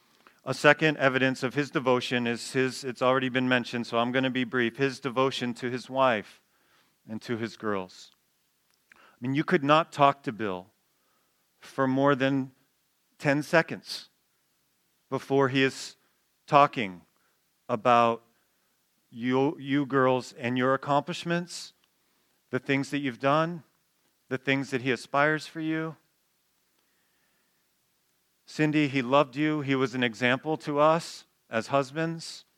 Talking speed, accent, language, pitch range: 140 wpm, American, English, 120-140 Hz